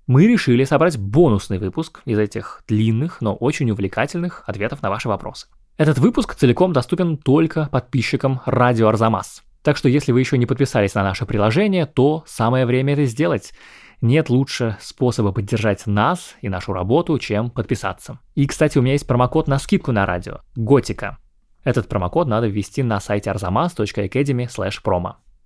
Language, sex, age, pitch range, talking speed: Russian, male, 20-39, 105-145 Hz, 160 wpm